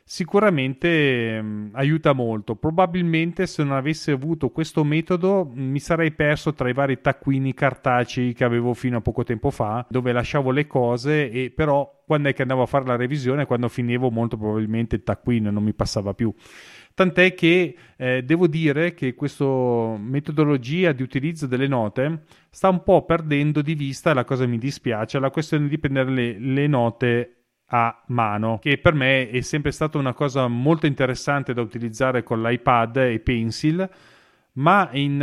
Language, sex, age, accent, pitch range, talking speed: Italian, male, 30-49, native, 125-155 Hz, 170 wpm